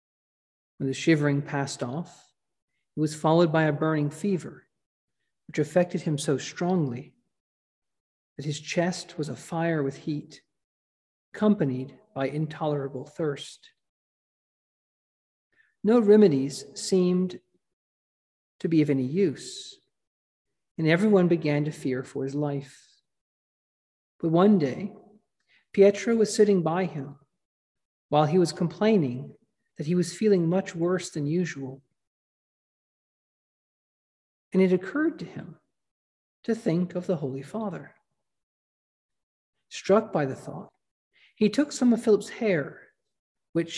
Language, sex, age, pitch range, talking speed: English, male, 50-69, 140-195 Hz, 120 wpm